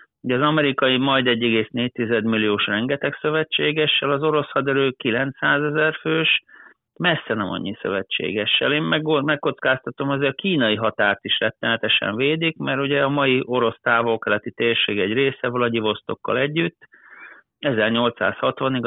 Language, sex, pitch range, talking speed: Hungarian, male, 110-140 Hz, 125 wpm